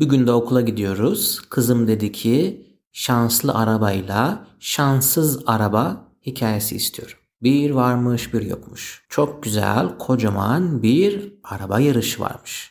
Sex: male